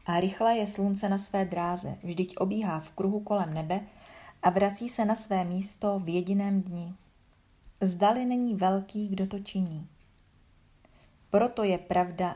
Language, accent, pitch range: Czech, native, 175-205 Hz